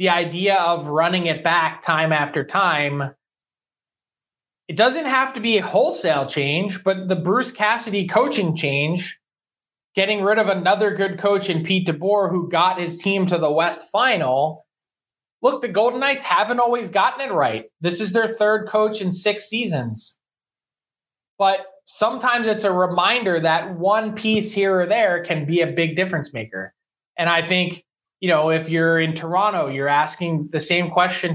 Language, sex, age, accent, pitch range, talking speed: English, male, 20-39, American, 160-205 Hz, 170 wpm